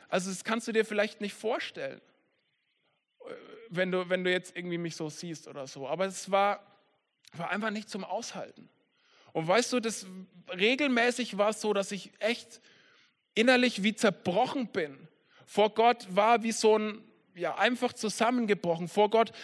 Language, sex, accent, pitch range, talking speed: German, male, German, 180-230 Hz, 165 wpm